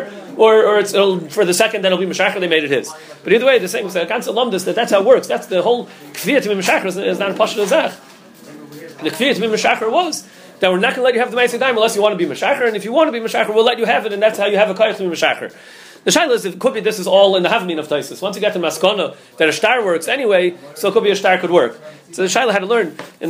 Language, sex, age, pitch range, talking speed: English, male, 30-49, 160-225 Hz, 295 wpm